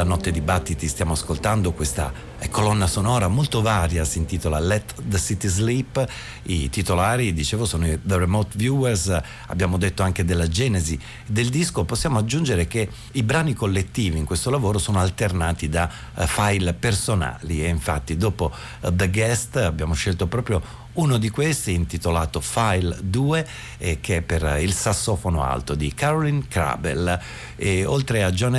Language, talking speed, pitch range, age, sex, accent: Italian, 160 wpm, 85-115 Hz, 50-69, male, native